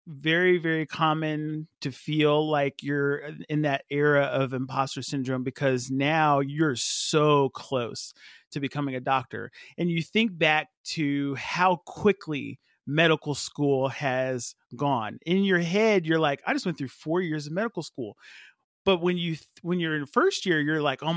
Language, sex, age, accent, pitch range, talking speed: English, male, 30-49, American, 135-180 Hz, 165 wpm